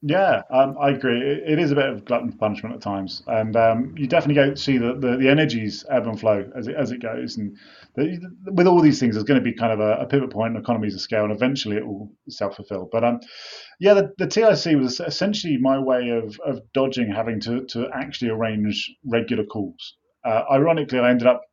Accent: British